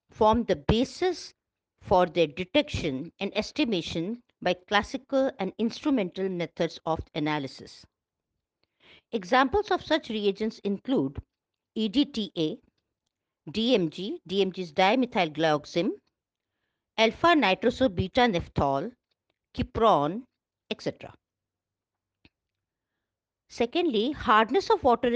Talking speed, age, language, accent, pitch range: 80 wpm, 50-69, English, Indian, 180-265 Hz